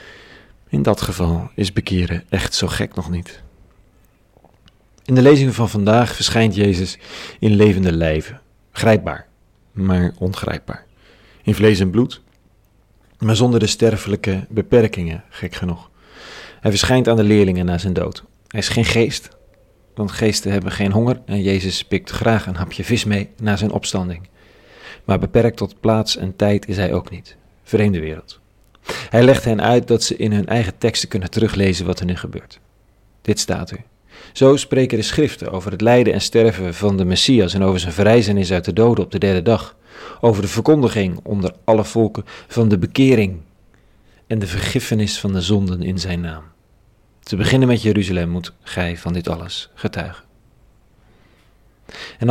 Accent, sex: Dutch, male